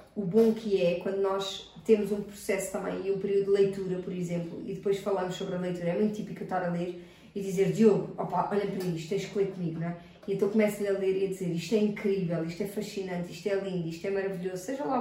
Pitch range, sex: 190-235 Hz, female